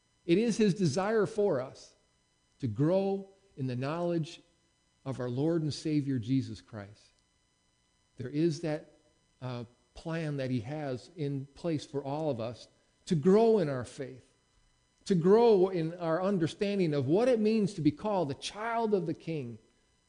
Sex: male